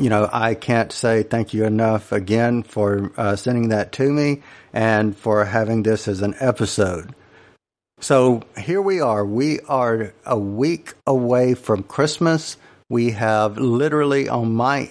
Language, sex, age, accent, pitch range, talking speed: English, male, 50-69, American, 110-130 Hz, 155 wpm